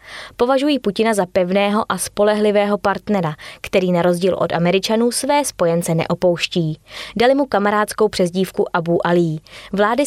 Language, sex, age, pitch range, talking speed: Czech, female, 20-39, 175-225 Hz, 130 wpm